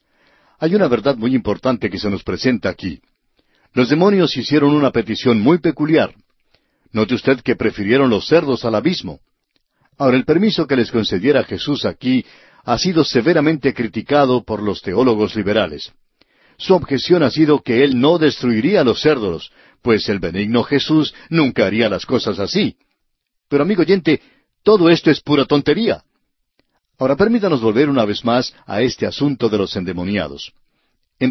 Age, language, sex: 60-79, Spanish, male